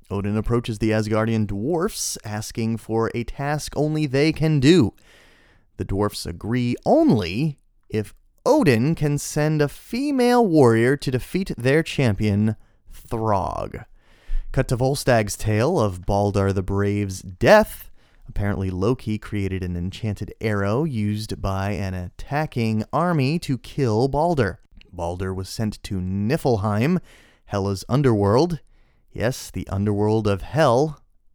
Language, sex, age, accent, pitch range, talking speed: English, male, 30-49, American, 100-140 Hz, 125 wpm